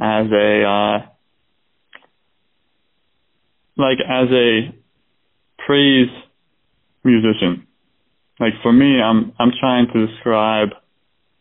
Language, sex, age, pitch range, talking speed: English, male, 20-39, 110-130 Hz, 85 wpm